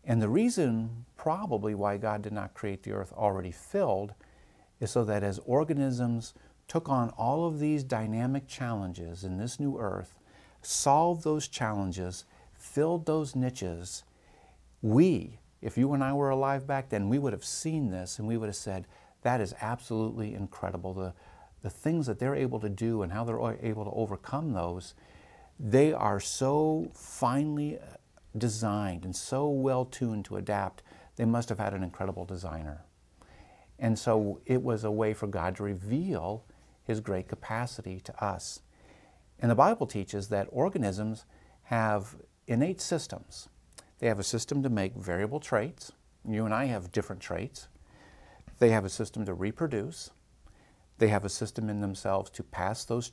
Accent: American